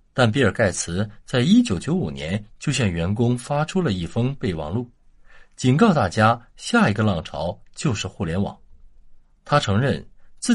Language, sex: Chinese, male